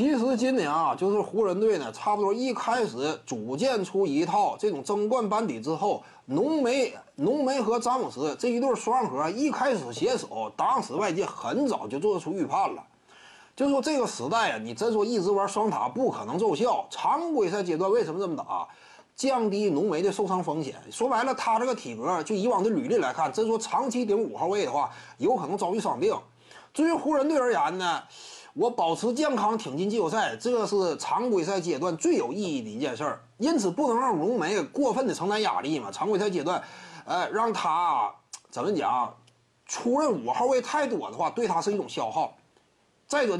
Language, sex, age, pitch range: Chinese, male, 30-49, 210-280 Hz